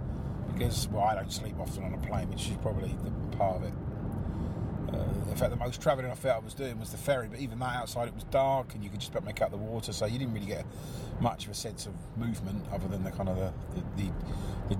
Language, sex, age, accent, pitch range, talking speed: English, male, 30-49, British, 100-125 Hz, 260 wpm